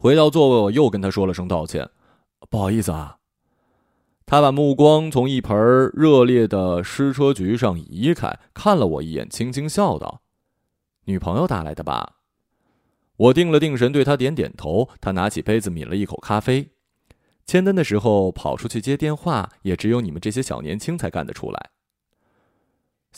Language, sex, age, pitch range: Chinese, male, 30-49, 95-140 Hz